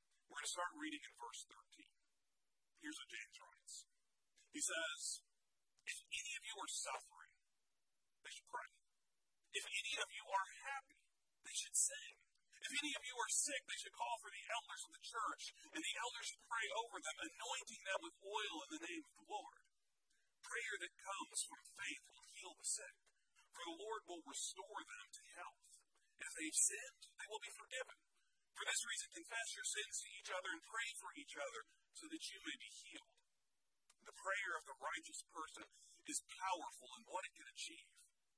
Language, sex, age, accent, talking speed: English, male, 40-59, American, 190 wpm